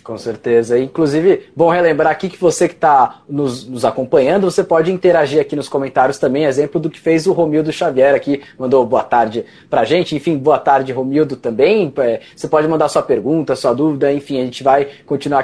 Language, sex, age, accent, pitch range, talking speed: Portuguese, male, 20-39, Brazilian, 135-185 Hz, 200 wpm